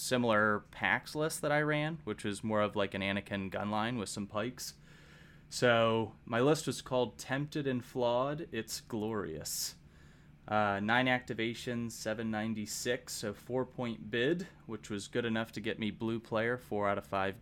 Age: 30-49